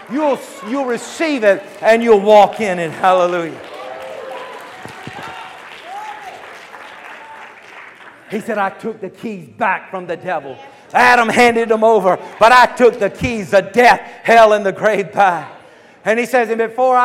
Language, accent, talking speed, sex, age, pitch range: English, American, 145 wpm, male, 50-69, 215-255 Hz